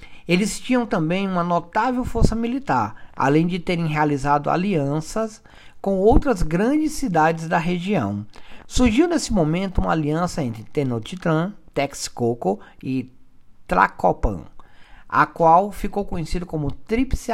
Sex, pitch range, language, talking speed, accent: male, 140-200 Hz, Portuguese, 120 wpm, Brazilian